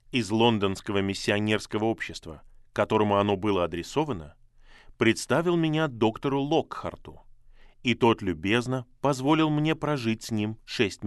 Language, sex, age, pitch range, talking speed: Russian, male, 20-39, 105-125 Hz, 115 wpm